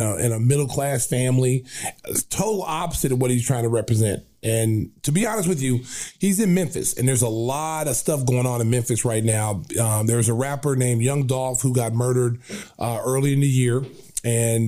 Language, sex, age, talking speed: English, male, 30-49, 205 wpm